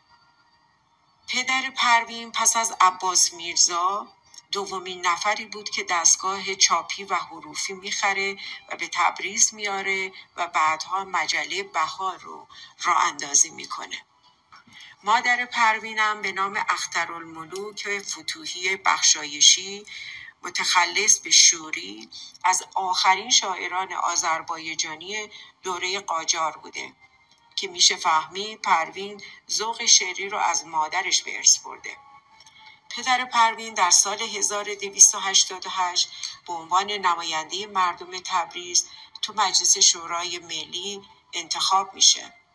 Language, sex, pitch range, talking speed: Persian, female, 175-215 Hz, 100 wpm